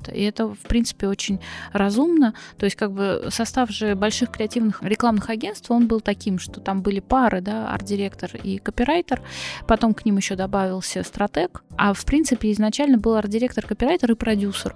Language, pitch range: Russian, 200-235 Hz